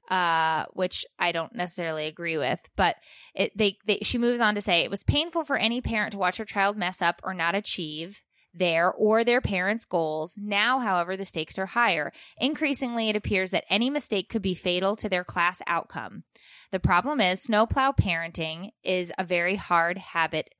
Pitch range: 180-220 Hz